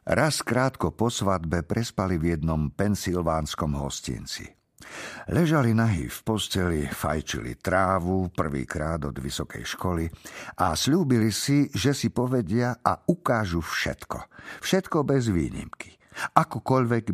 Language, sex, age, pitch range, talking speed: Slovak, male, 50-69, 90-130 Hz, 110 wpm